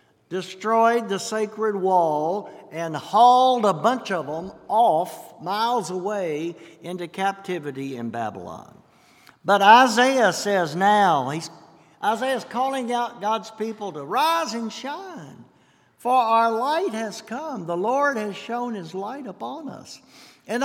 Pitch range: 170-240 Hz